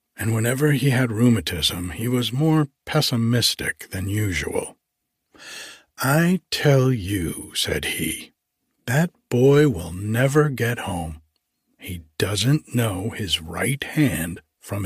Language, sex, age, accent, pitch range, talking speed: English, male, 60-79, American, 100-140 Hz, 115 wpm